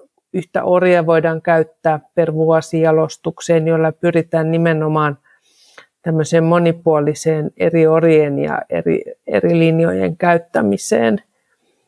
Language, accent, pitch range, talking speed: Finnish, native, 160-195 Hz, 85 wpm